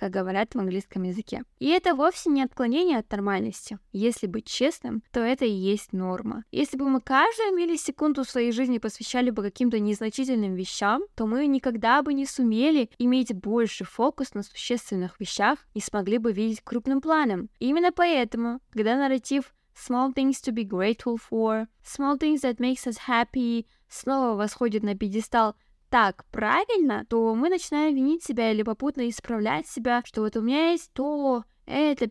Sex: female